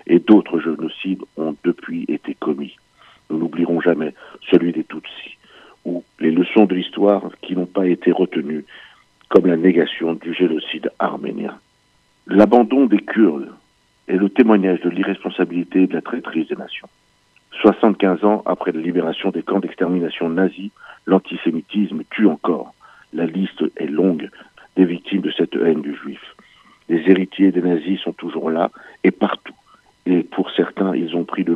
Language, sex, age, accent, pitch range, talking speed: French, male, 60-79, French, 85-95 Hz, 145 wpm